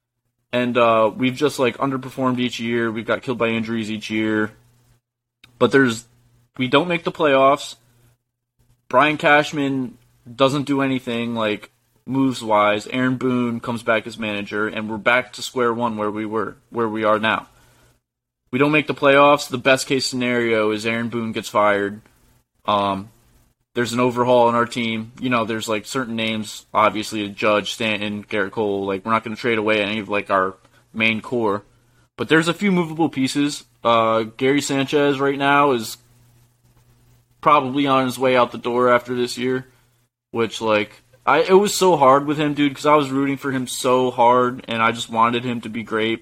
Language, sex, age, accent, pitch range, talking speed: English, male, 20-39, American, 115-130 Hz, 180 wpm